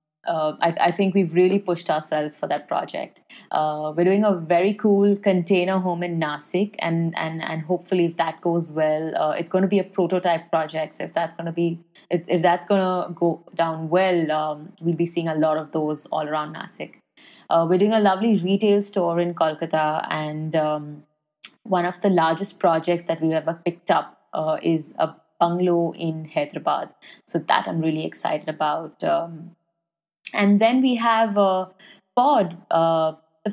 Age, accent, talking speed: 20-39, Indian, 180 wpm